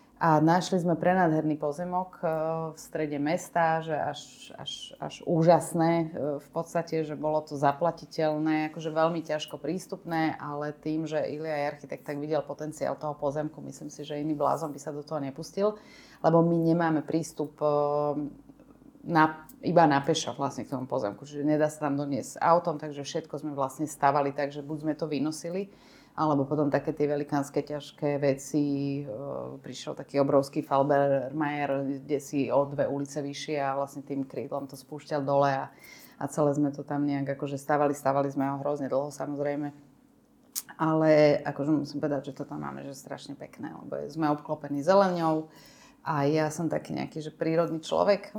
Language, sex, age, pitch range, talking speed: Slovak, female, 30-49, 145-160 Hz, 170 wpm